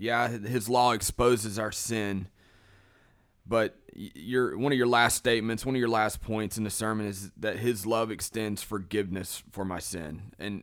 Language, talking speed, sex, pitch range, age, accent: English, 175 wpm, male, 95-115 Hz, 30-49, American